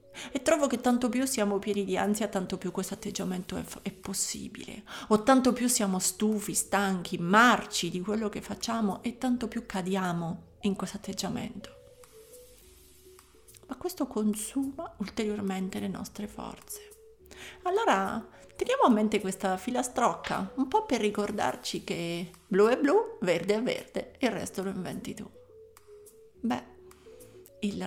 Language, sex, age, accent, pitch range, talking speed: Italian, female, 30-49, native, 200-250 Hz, 140 wpm